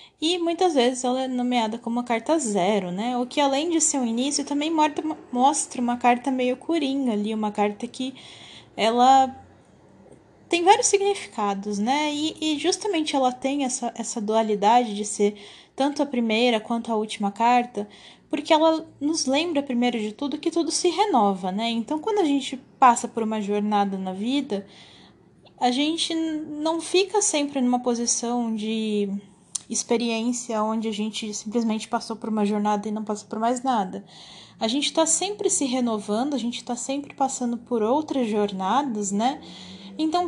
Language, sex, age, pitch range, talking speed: Portuguese, female, 10-29, 220-285 Hz, 165 wpm